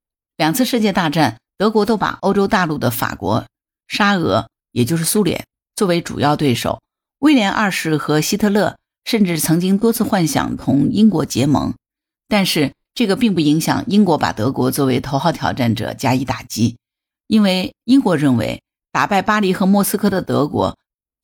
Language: Chinese